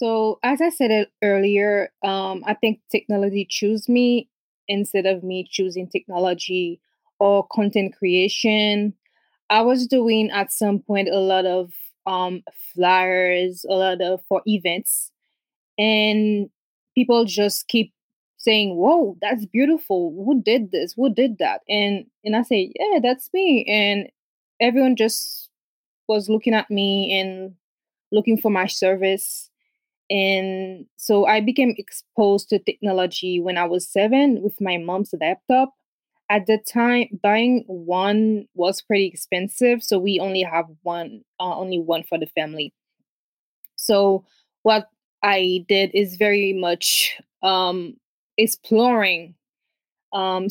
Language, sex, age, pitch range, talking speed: English, female, 20-39, 185-220 Hz, 135 wpm